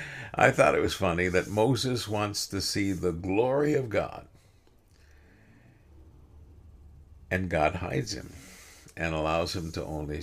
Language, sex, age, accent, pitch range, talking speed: English, male, 60-79, American, 90-110 Hz, 135 wpm